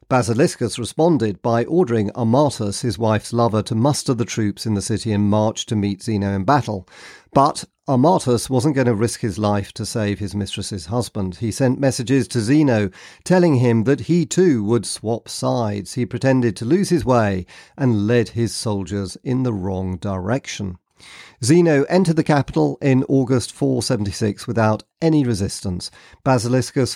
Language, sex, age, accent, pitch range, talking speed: English, male, 50-69, British, 105-130 Hz, 160 wpm